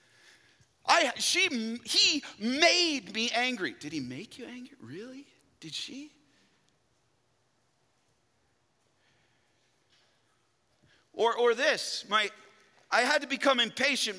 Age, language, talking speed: 40-59, English, 95 wpm